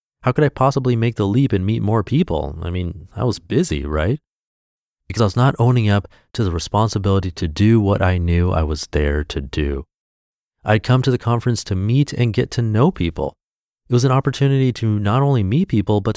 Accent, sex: American, male